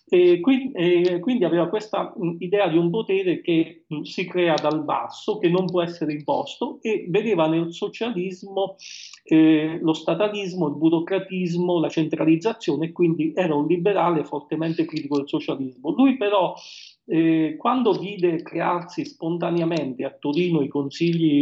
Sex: male